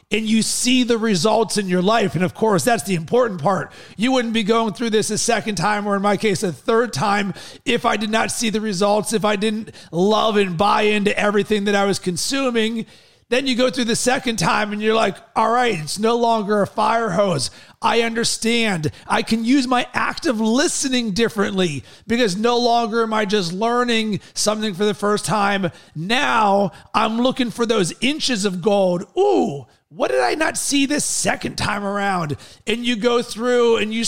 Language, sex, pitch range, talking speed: English, male, 200-235 Hz, 200 wpm